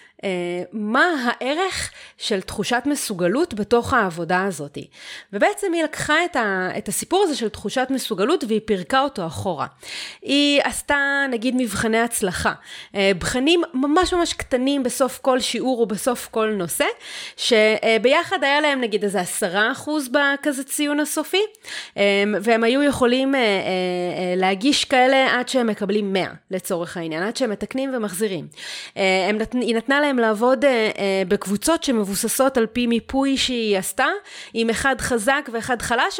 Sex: female